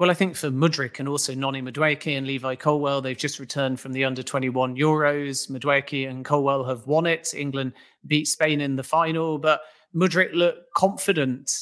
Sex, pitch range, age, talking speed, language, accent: male, 135-165 Hz, 30-49, 180 wpm, English, British